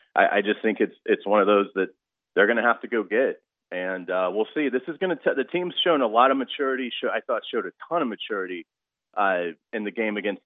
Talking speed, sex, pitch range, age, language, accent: 250 wpm, male, 95-125 Hz, 30-49, English, American